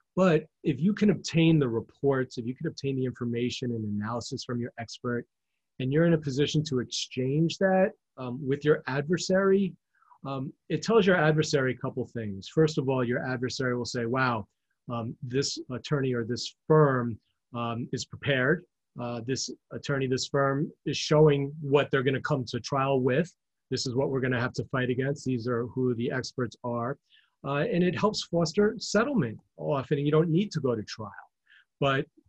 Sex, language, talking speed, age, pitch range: male, English, 185 wpm, 30-49, 120-150 Hz